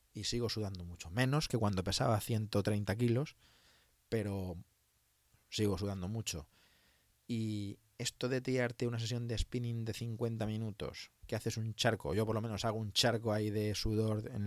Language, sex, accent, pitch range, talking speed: Spanish, male, Spanish, 100-120 Hz, 165 wpm